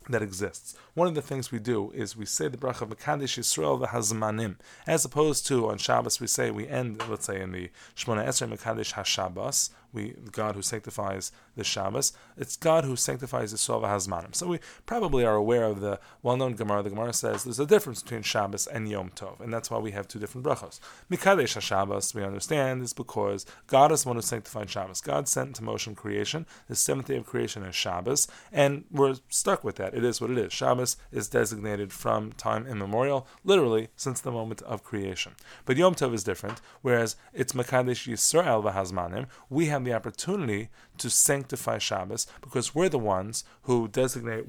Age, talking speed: 30-49, 195 wpm